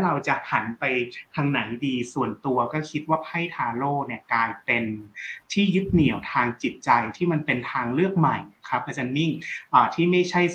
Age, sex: 30-49, male